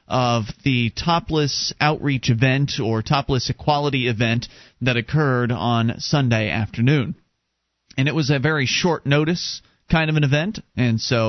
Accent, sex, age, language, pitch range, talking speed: American, male, 30-49, English, 115-145 Hz, 145 wpm